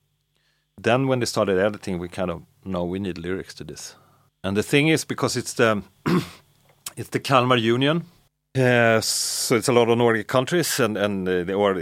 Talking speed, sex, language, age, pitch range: 195 wpm, male, Danish, 30-49, 95-125 Hz